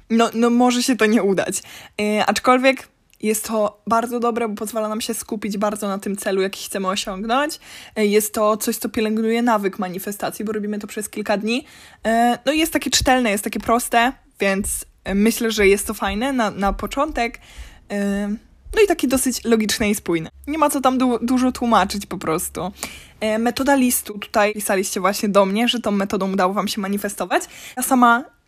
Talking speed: 180 wpm